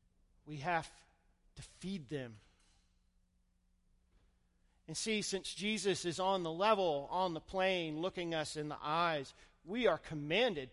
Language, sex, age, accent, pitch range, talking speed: English, male, 40-59, American, 130-195 Hz, 135 wpm